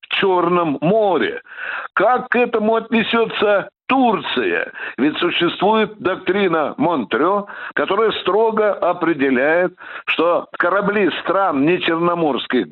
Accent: native